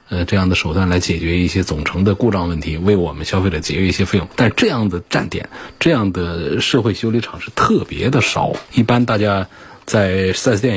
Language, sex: Chinese, male